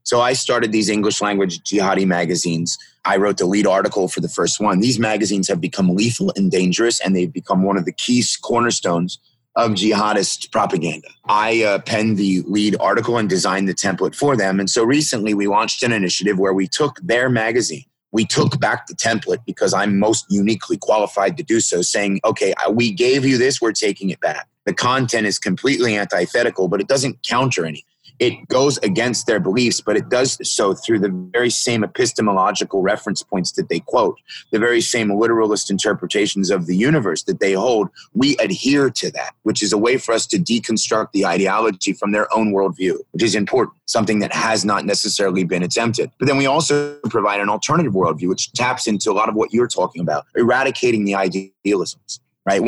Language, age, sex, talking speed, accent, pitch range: English, 30-49, male, 195 wpm, American, 95-120 Hz